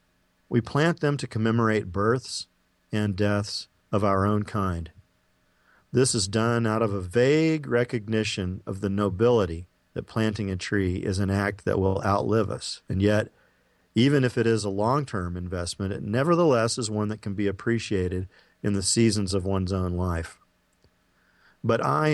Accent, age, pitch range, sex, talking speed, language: American, 40-59, 90-115 Hz, male, 165 wpm, English